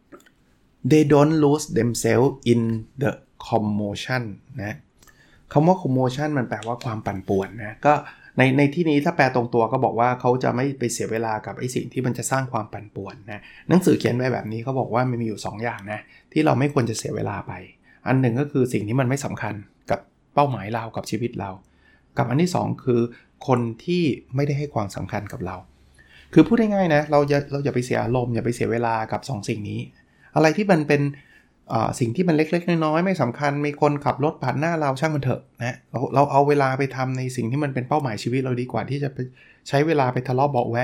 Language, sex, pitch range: Thai, male, 115-145 Hz